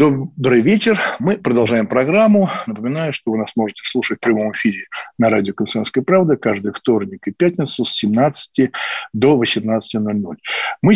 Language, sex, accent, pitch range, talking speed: Russian, male, native, 115-160 Hz, 150 wpm